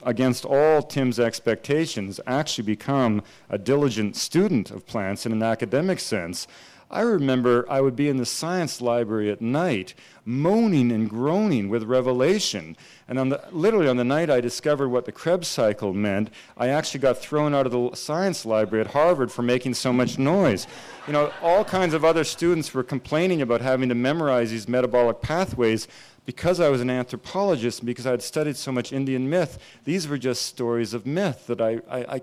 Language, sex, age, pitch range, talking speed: English, male, 40-59, 120-150 Hz, 185 wpm